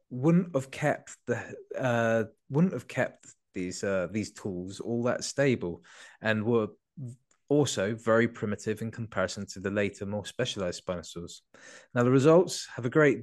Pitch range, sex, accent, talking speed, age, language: 100-130 Hz, male, British, 155 wpm, 20-39, English